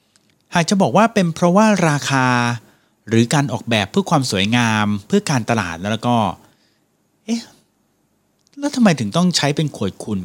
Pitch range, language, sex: 110-170 Hz, Thai, male